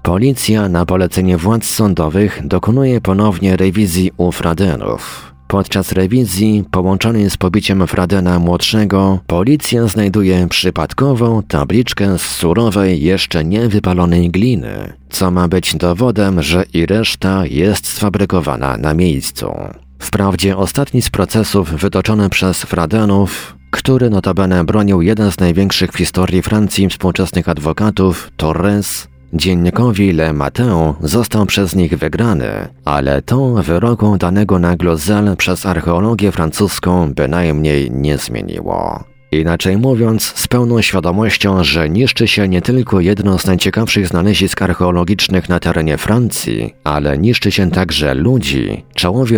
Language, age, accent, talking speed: Polish, 40-59, native, 120 wpm